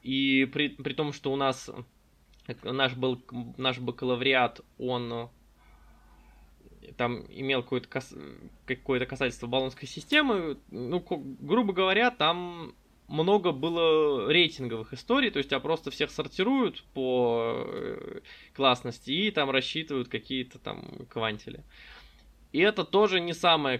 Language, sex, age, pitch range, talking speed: Russian, male, 20-39, 120-150 Hz, 120 wpm